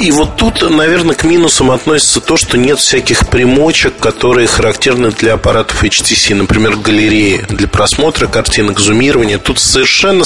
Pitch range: 110-135 Hz